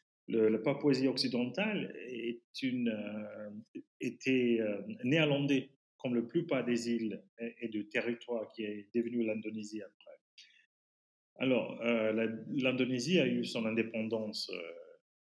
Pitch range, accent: 110-155 Hz, French